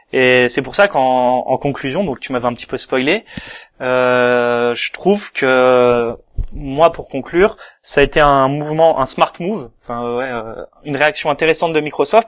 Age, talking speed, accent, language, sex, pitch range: 20-39, 180 wpm, French, French, male, 125-155 Hz